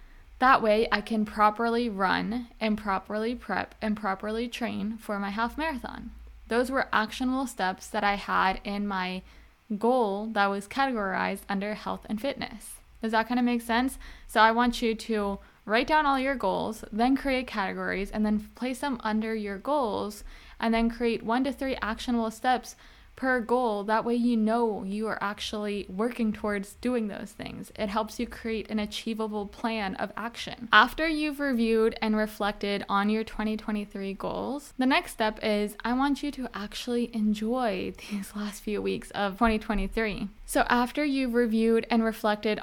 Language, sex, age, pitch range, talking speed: English, female, 20-39, 210-240 Hz, 170 wpm